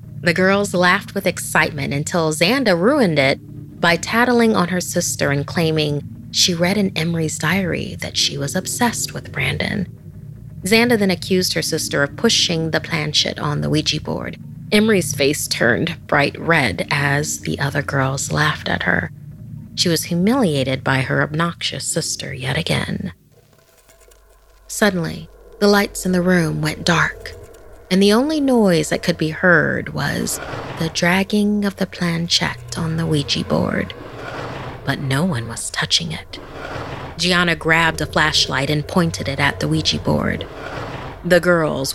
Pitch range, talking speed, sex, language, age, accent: 135-180 Hz, 150 wpm, female, English, 30-49, American